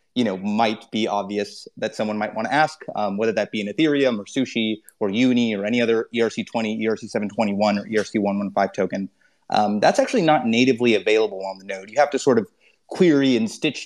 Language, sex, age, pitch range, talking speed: English, male, 30-49, 105-135 Hz, 200 wpm